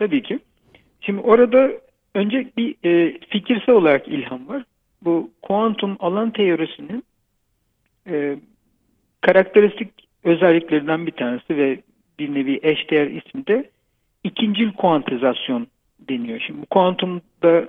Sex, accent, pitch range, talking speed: male, native, 155-215 Hz, 95 wpm